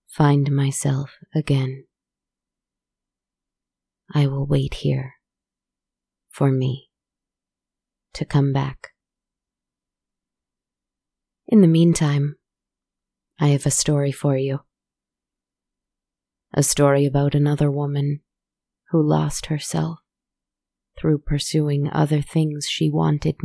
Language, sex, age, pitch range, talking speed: English, female, 20-39, 140-155 Hz, 90 wpm